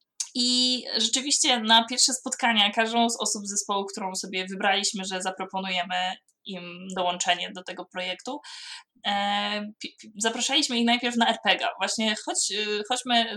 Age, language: 20-39, Polish